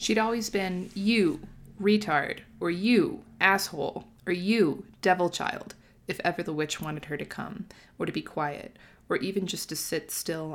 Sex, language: female, English